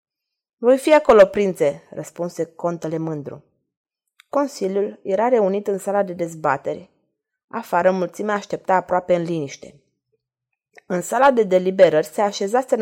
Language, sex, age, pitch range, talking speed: Romanian, female, 20-39, 175-230 Hz, 120 wpm